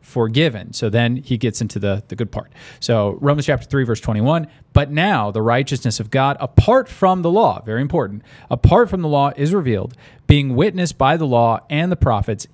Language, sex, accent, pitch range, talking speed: English, male, American, 115-145 Hz, 200 wpm